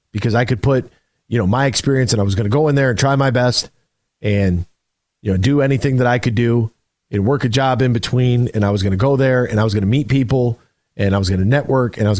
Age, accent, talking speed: 40-59, American, 285 wpm